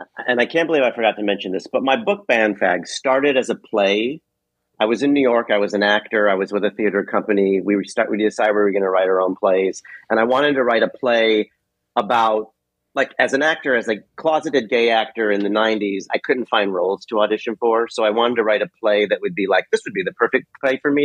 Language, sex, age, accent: English, male, 40-59, American